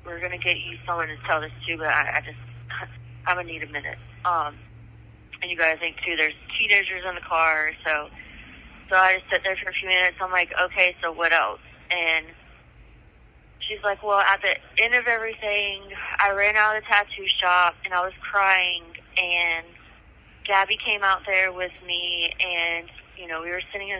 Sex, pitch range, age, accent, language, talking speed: female, 160-190 Hz, 20-39, American, English, 205 wpm